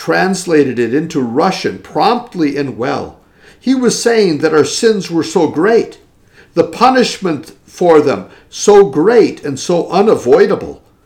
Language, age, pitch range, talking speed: English, 50-69, 140-220 Hz, 135 wpm